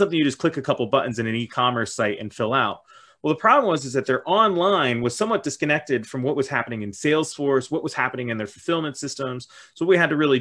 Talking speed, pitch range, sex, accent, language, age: 255 wpm, 120-150 Hz, male, American, English, 30-49